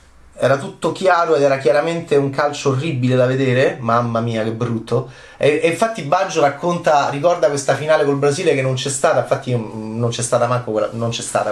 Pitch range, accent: 115-140 Hz, native